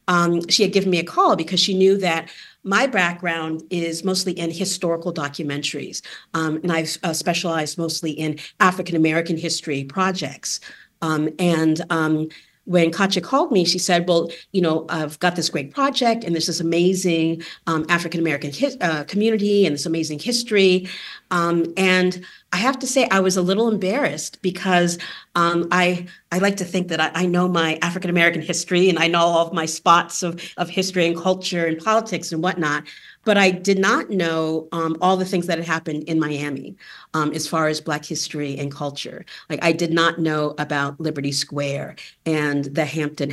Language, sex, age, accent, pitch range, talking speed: English, female, 40-59, American, 155-180 Hz, 185 wpm